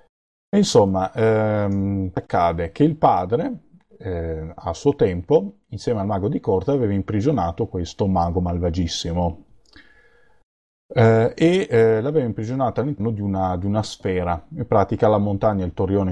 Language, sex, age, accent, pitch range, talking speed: Italian, male, 30-49, native, 90-115 Hz, 140 wpm